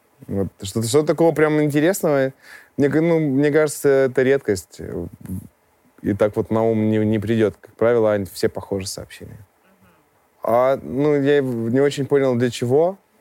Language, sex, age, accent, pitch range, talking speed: Russian, male, 20-39, native, 105-135 Hz, 130 wpm